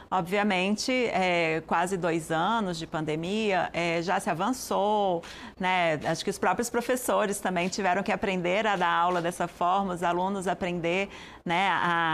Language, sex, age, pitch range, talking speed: Portuguese, female, 30-49, 175-215 Hz, 155 wpm